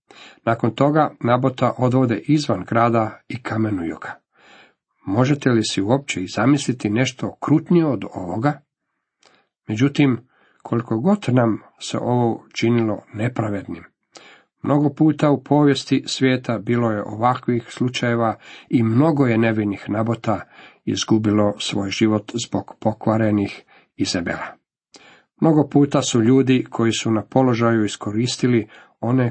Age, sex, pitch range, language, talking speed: 50-69, male, 110-135 Hz, Croatian, 115 wpm